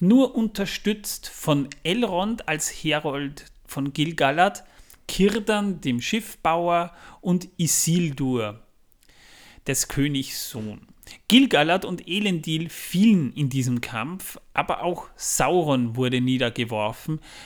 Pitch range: 140-175 Hz